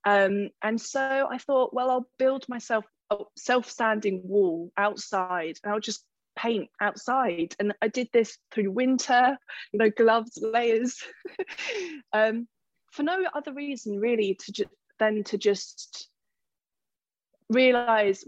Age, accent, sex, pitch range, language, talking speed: 20-39, British, female, 185-225 Hz, English, 135 wpm